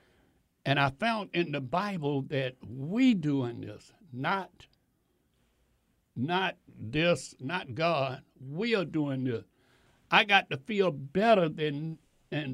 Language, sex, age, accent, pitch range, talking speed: English, male, 60-79, American, 150-200 Hz, 120 wpm